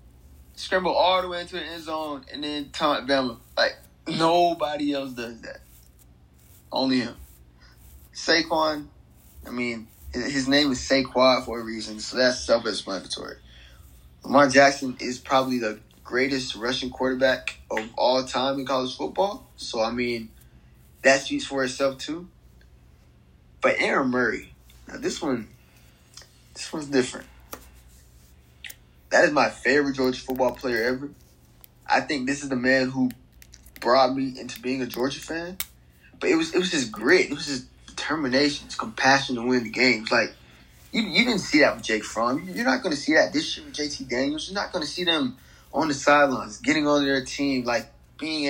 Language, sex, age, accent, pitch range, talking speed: English, male, 20-39, American, 110-145 Hz, 170 wpm